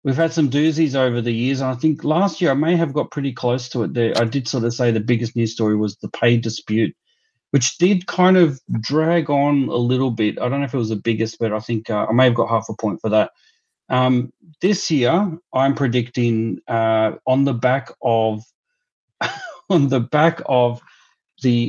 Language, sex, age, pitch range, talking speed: English, male, 30-49, 110-135 Hz, 220 wpm